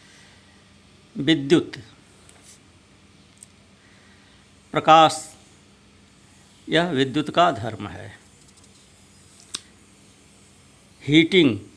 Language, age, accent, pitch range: Hindi, 60-79, native, 100-150 Hz